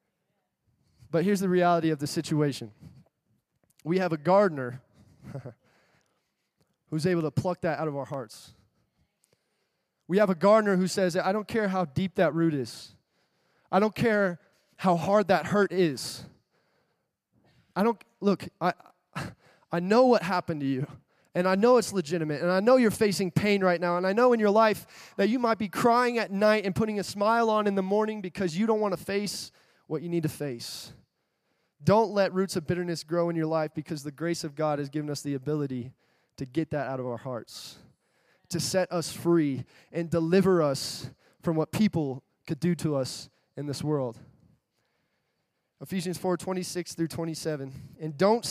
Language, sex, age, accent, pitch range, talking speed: English, male, 20-39, American, 150-195 Hz, 185 wpm